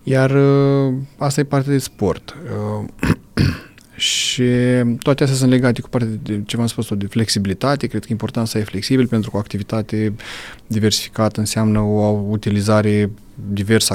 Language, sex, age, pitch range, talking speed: Romanian, male, 30-49, 105-125 Hz, 155 wpm